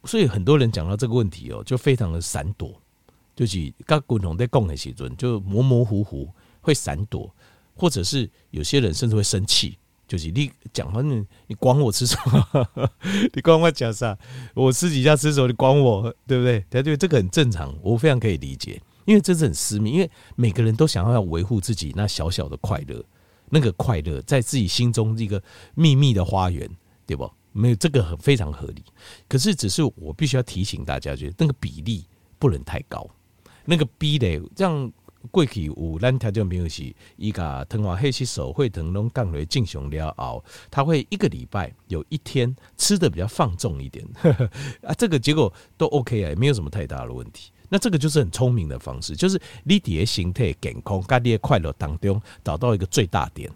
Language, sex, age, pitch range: Chinese, male, 50-69, 95-140 Hz